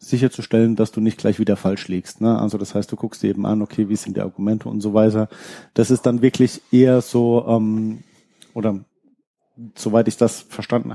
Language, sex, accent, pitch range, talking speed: German, male, German, 105-120 Hz, 205 wpm